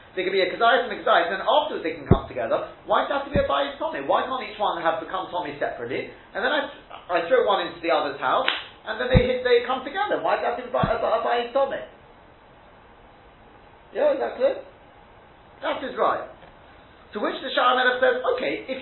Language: English